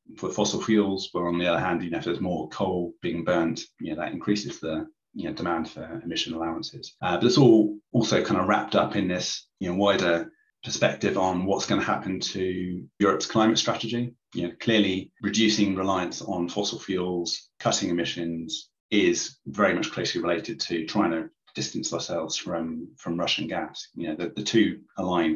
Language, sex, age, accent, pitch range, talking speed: English, male, 30-49, British, 85-105 Hz, 190 wpm